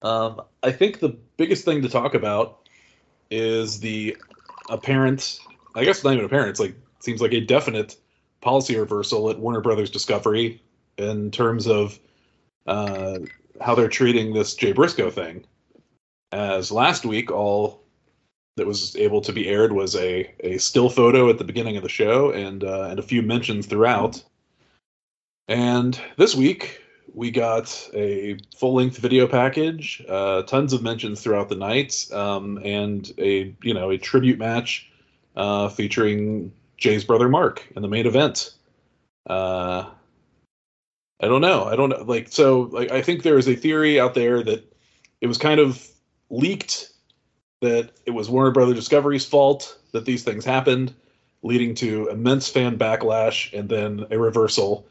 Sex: male